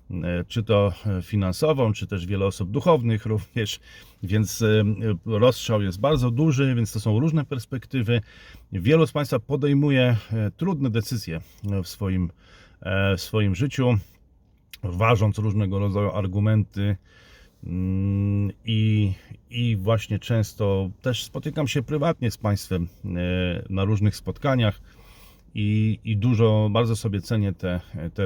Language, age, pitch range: Polish, 40-59, 90-115 Hz